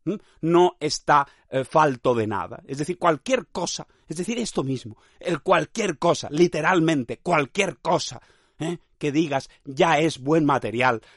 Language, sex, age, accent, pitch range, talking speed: Spanish, male, 30-49, Spanish, 140-210 Hz, 140 wpm